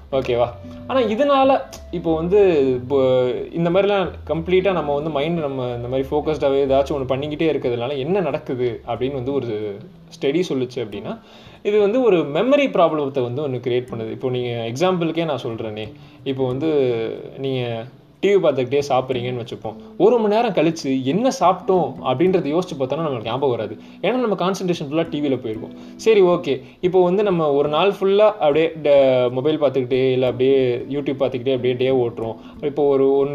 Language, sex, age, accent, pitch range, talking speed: Tamil, male, 20-39, native, 130-185 Hz, 105 wpm